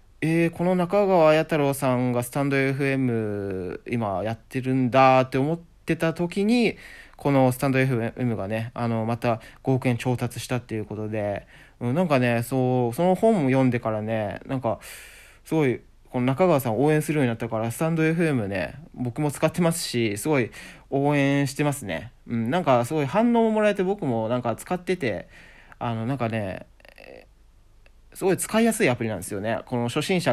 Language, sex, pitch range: Japanese, male, 115-170 Hz